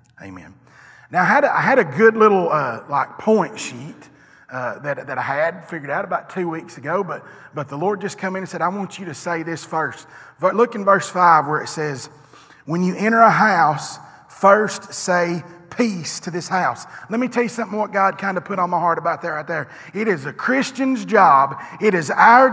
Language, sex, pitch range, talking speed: English, male, 170-225 Hz, 225 wpm